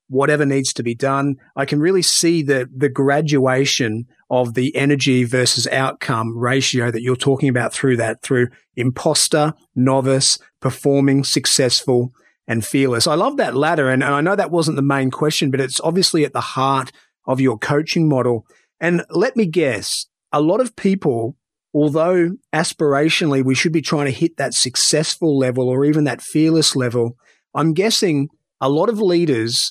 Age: 30-49